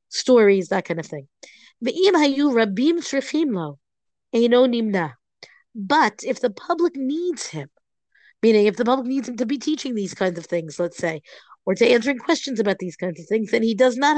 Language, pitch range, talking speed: English, 190-250 Hz, 165 wpm